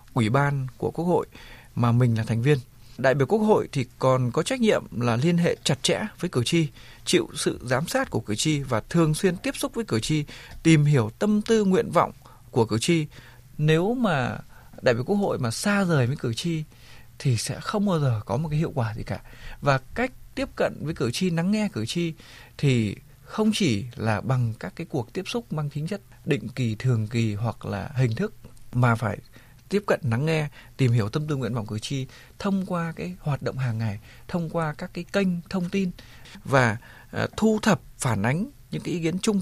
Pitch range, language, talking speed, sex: 120-170 Hz, Vietnamese, 220 wpm, male